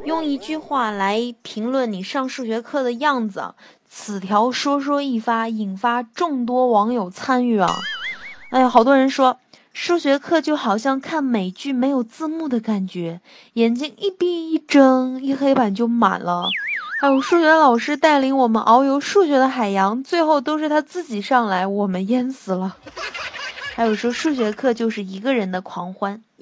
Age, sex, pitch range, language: 20-39, female, 195-265 Hz, Chinese